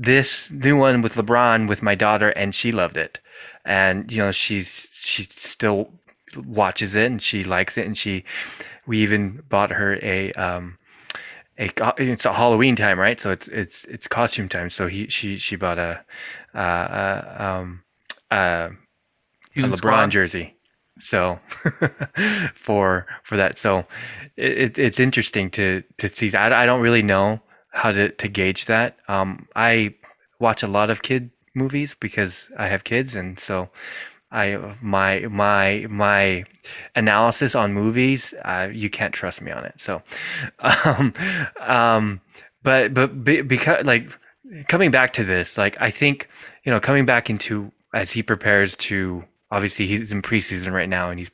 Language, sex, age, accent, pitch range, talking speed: English, male, 20-39, American, 95-120 Hz, 160 wpm